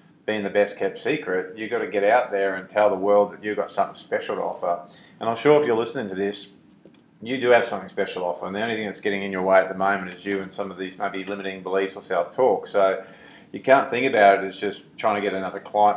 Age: 30-49